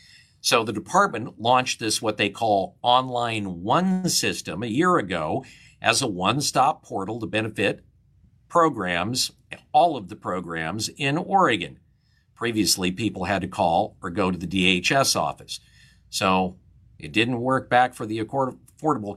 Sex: male